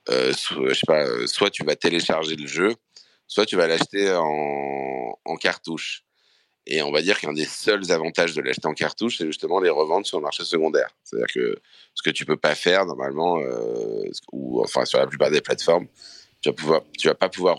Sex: male